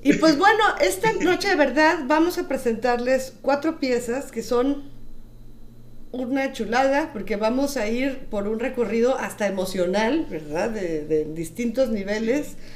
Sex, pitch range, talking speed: female, 190-250 Hz, 140 wpm